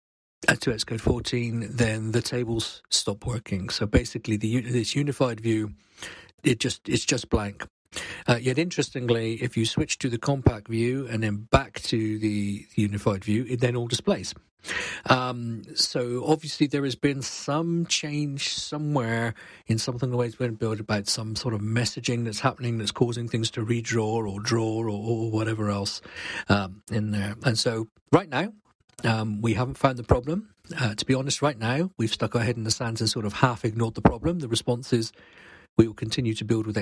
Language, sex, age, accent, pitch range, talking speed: English, male, 50-69, British, 110-130 Hz, 190 wpm